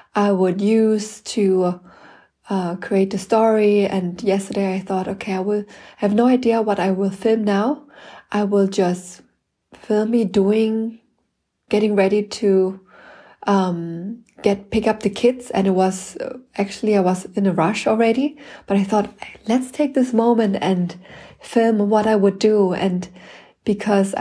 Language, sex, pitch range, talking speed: English, female, 190-220 Hz, 155 wpm